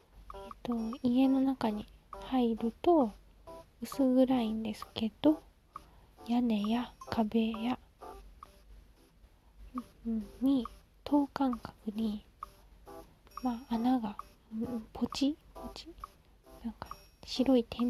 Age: 20-39